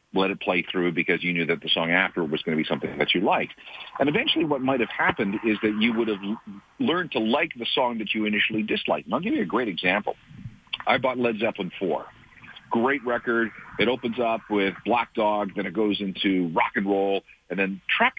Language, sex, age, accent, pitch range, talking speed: English, male, 50-69, American, 100-155 Hz, 230 wpm